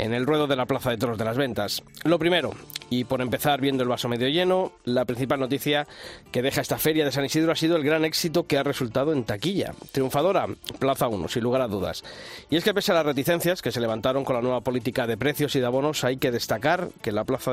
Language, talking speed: Spanish, 250 wpm